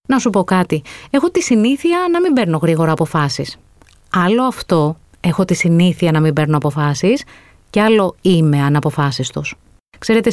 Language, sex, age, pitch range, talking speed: Greek, female, 30-49, 155-215 Hz, 165 wpm